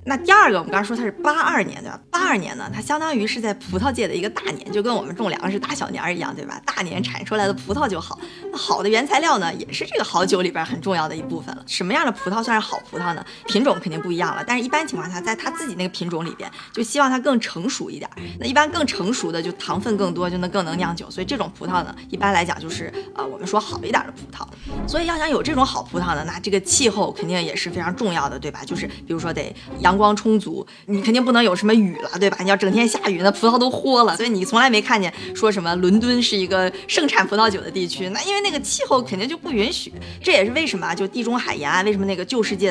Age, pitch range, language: 20-39, 185-245 Hz, Chinese